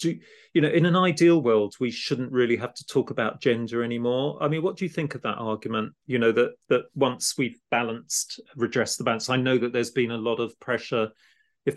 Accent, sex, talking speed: British, male, 230 wpm